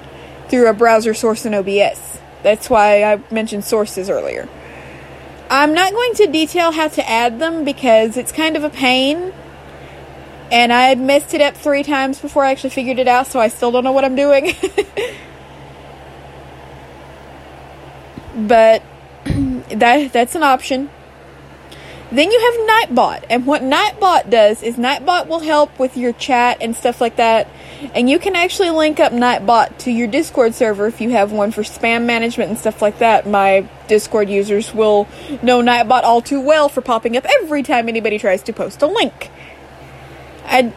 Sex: female